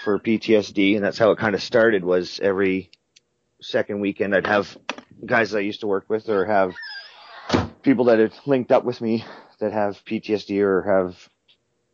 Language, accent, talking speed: English, American, 180 wpm